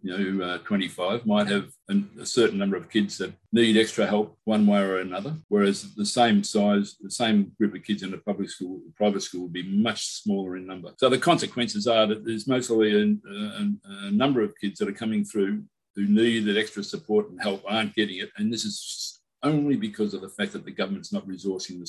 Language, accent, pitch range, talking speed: English, Australian, 105-140 Hz, 215 wpm